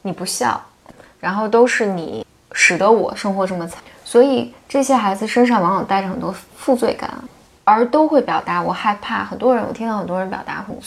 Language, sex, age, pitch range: Chinese, female, 20-39, 190-245 Hz